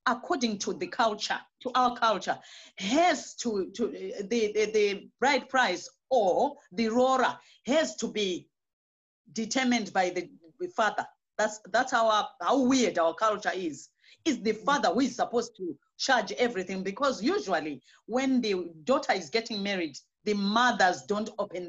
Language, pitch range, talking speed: English, 200-265 Hz, 150 wpm